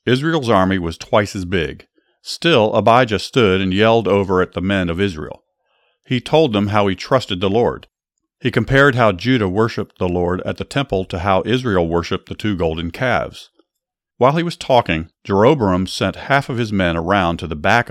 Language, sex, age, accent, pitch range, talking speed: English, male, 50-69, American, 90-115 Hz, 190 wpm